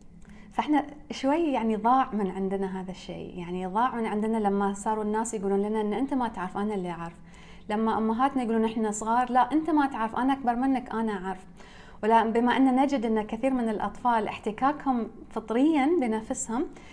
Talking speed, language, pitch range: 170 wpm, English, 200-250 Hz